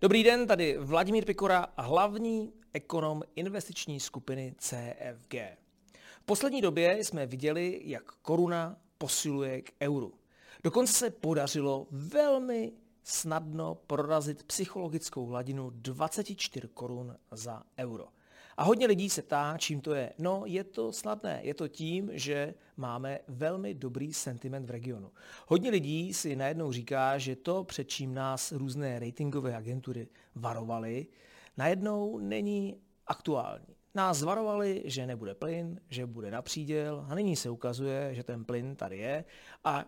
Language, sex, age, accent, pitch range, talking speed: Czech, male, 40-59, native, 125-170 Hz, 135 wpm